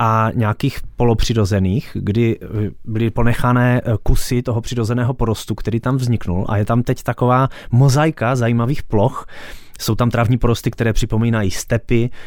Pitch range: 110-125 Hz